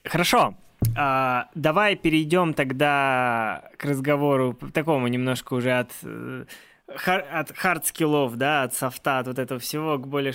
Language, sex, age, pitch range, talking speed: Russian, male, 20-39, 125-170 Hz, 130 wpm